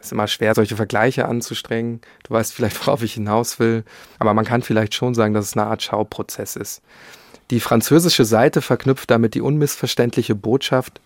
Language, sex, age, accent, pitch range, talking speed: German, male, 40-59, German, 110-125 Hz, 180 wpm